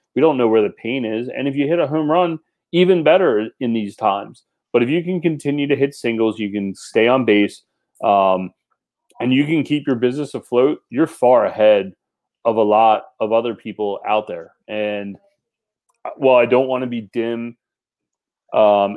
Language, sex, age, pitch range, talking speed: English, male, 30-49, 105-125 Hz, 190 wpm